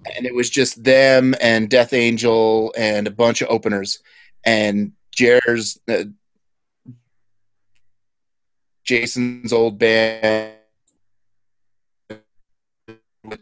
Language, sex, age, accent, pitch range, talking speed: English, male, 30-49, American, 110-130 Hz, 85 wpm